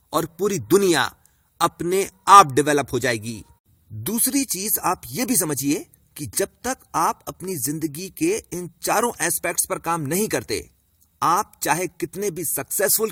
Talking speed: 150 wpm